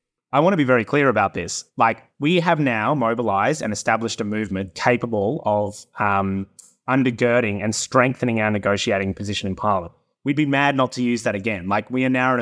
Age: 20-39